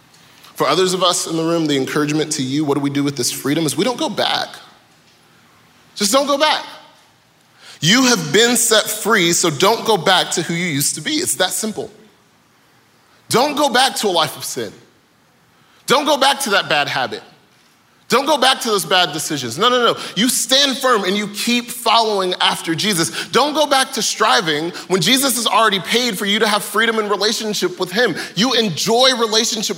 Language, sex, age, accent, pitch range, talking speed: English, male, 30-49, American, 165-240 Hz, 205 wpm